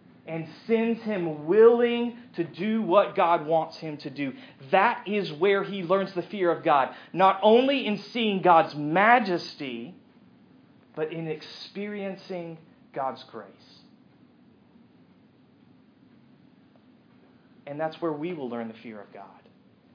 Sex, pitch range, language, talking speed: male, 170-235 Hz, English, 125 wpm